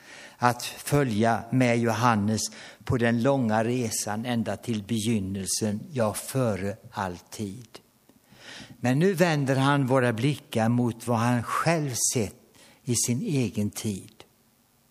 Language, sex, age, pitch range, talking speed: Swedish, male, 60-79, 105-130 Hz, 115 wpm